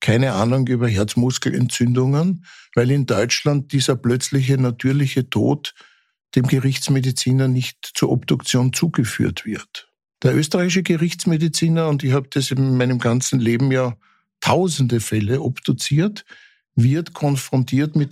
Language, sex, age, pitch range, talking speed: German, male, 60-79, 125-150 Hz, 120 wpm